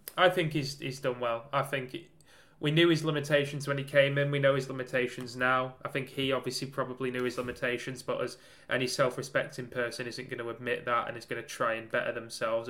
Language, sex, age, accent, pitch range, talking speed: English, male, 10-29, British, 125-140 Hz, 225 wpm